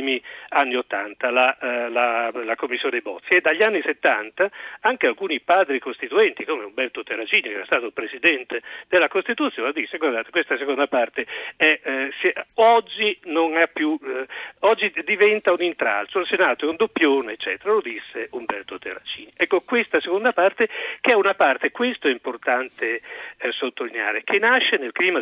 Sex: male